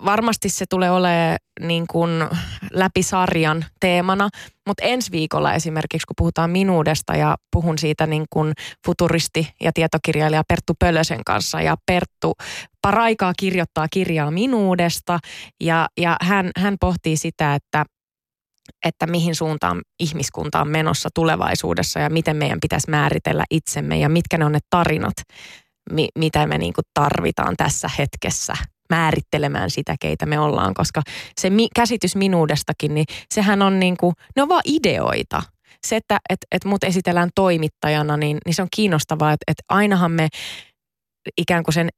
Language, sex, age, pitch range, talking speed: Finnish, female, 20-39, 155-190 Hz, 145 wpm